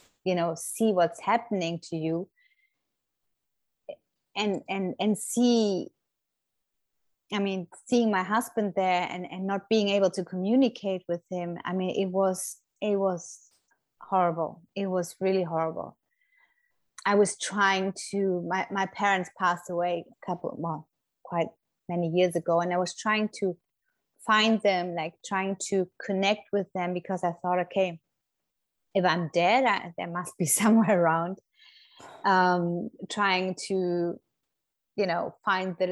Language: English